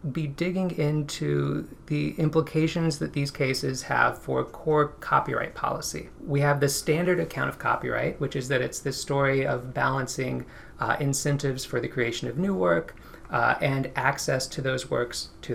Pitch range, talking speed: 130-160 Hz, 165 wpm